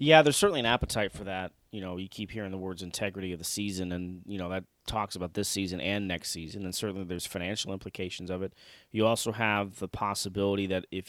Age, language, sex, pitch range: 30-49, English, male, 90-105 Hz